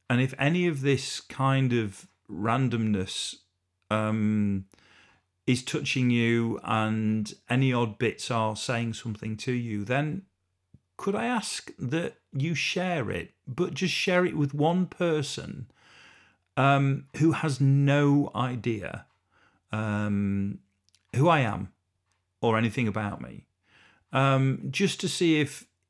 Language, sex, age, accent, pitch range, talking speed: English, male, 40-59, British, 110-140 Hz, 125 wpm